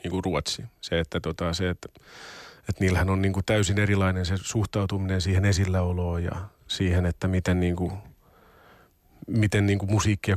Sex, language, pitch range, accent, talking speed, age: male, Finnish, 90-105 Hz, native, 145 wpm, 30-49